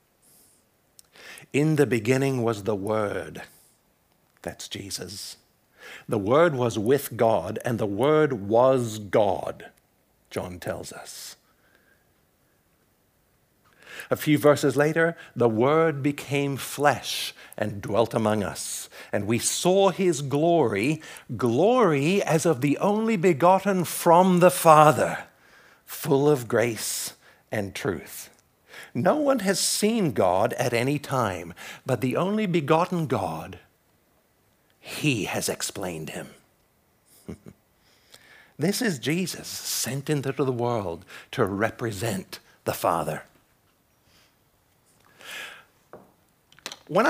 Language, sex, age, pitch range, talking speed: English, male, 60-79, 115-170 Hz, 105 wpm